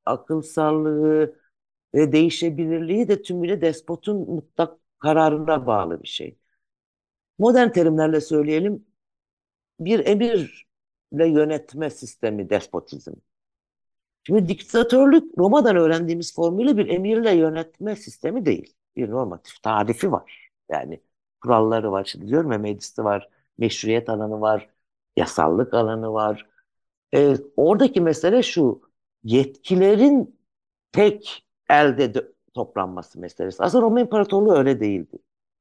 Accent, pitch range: native, 115-190 Hz